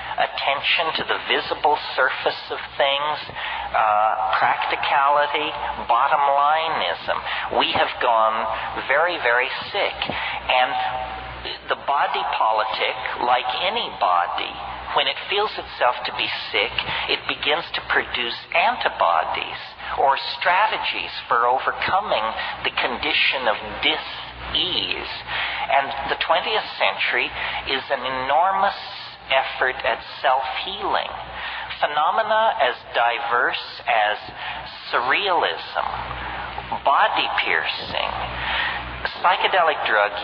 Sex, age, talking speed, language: male, 50-69, 95 wpm, English